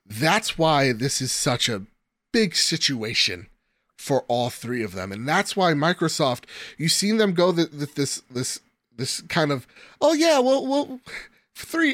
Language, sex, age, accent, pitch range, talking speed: English, male, 30-49, American, 120-185 Hz, 160 wpm